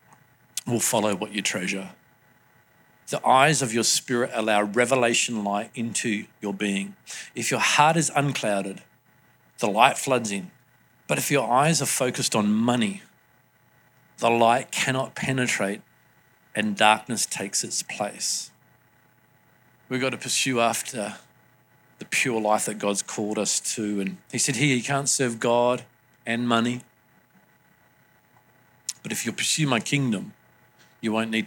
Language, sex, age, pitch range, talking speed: English, male, 50-69, 105-130 Hz, 140 wpm